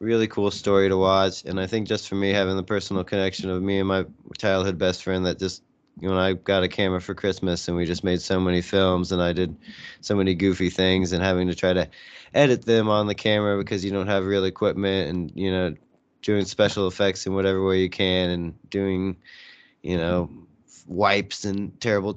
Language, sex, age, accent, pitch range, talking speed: English, male, 20-39, American, 90-100 Hz, 215 wpm